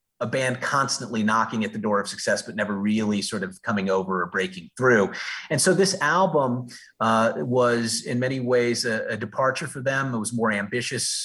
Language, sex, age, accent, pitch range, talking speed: English, male, 30-49, American, 105-130 Hz, 195 wpm